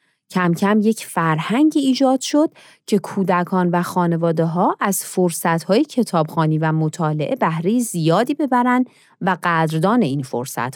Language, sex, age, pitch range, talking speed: Persian, female, 30-49, 155-230 Hz, 130 wpm